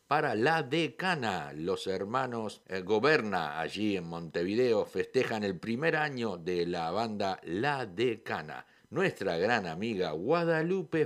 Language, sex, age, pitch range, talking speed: Spanish, male, 50-69, 95-130 Hz, 125 wpm